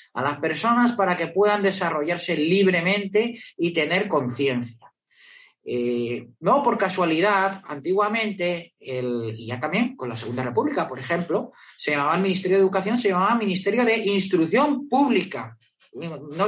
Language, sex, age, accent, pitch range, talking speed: Spanish, male, 30-49, Spanish, 150-205 Hz, 140 wpm